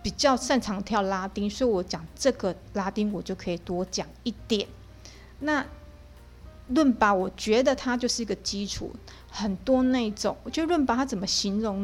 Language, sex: Chinese, female